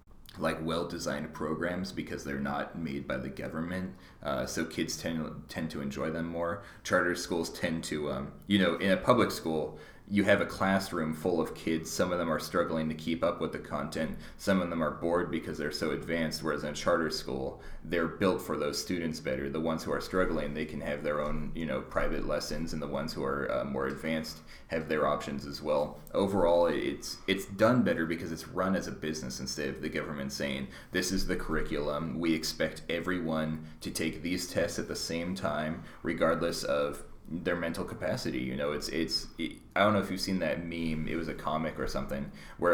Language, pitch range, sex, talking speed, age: English, 80-90 Hz, male, 210 wpm, 30-49